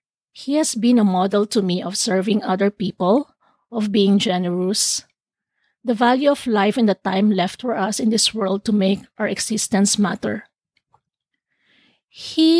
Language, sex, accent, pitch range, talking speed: English, female, Filipino, 195-235 Hz, 155 wpm